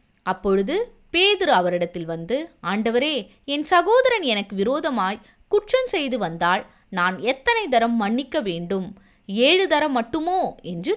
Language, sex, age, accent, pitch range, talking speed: Tamil, female, 20-39, native, 185-295 Hz, 105 wpm